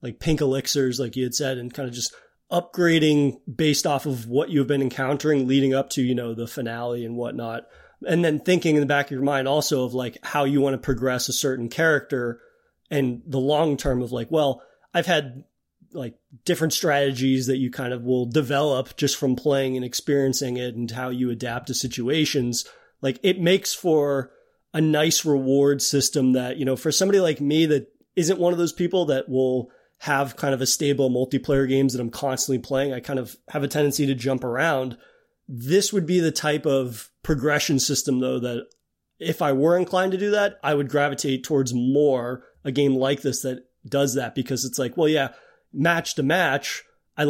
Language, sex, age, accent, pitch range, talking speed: English, male, 30-49, American, 130-150 Hz, 200 wpm